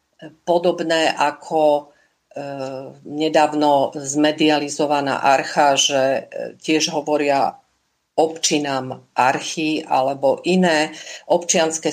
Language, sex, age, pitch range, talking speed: Slovak, female, 50-69, 150-175 Hz, 70 wpm